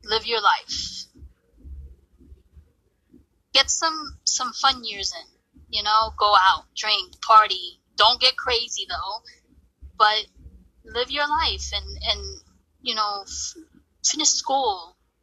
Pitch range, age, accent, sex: 190-310 Hz, 10-29, American, female